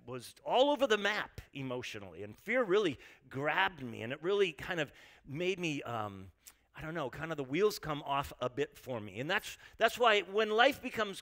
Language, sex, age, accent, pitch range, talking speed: English, male, 40-59, American, 130-190 Hz, 210 wpm